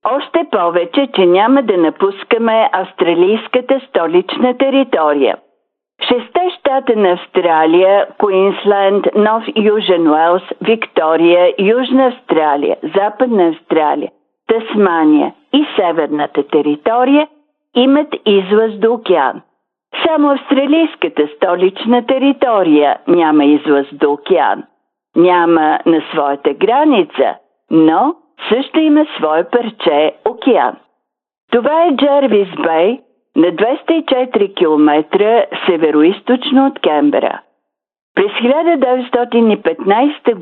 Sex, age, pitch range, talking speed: female, 50-69, 175-275 Hz, 90 wpm